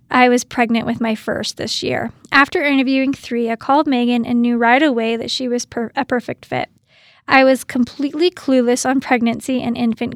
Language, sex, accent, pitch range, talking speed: English, female, American, 235-275 Hz, 195 wpm